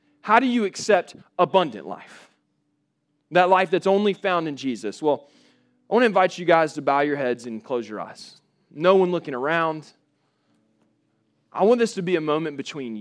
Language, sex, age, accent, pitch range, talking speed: English, male, 20-39, American, 145-205 Hz, 185 wpm